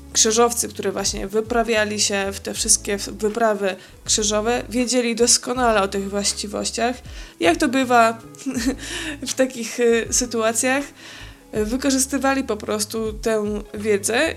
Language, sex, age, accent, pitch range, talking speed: Polish, female, 20-39, native, 210-235 Hz, 110 wpm